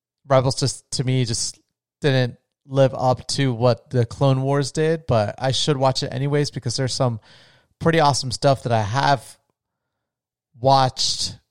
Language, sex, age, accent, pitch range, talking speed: English, male, 30-49, American, 120-145 Hz, 155 wpm